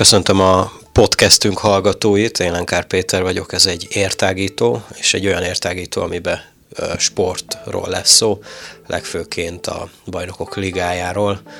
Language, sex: Hungarian, male